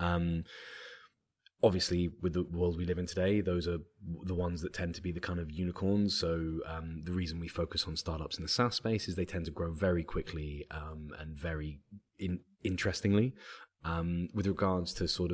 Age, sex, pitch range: 20-39, male, 80-90 Hz